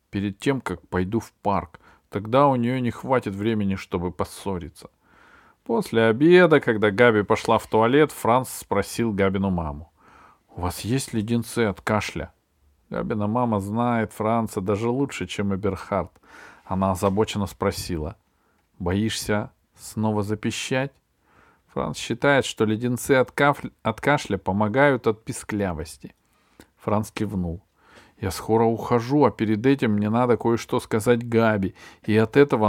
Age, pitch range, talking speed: 40-59, 100-140 Hz, 135 wpm